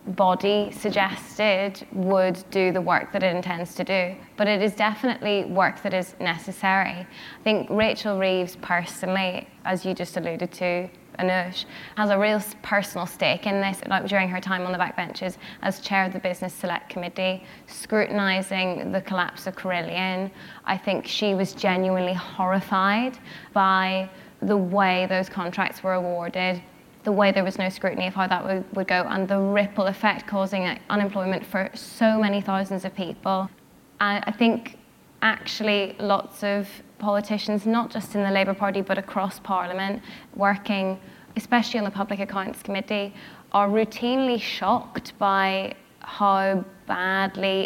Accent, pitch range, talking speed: British, 185-205 Hz, 155 wpm